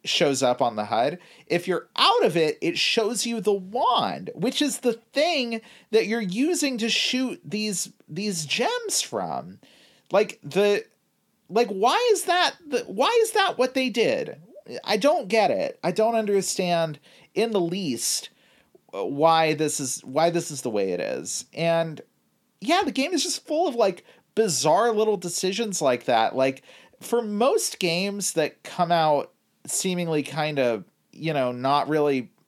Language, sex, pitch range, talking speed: English, male, 150-245 Hz, 165 wpm